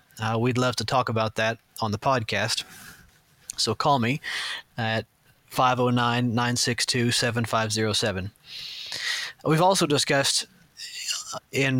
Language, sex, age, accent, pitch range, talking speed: English, male, 30-49, American, 120-140 Hz, 95 wpm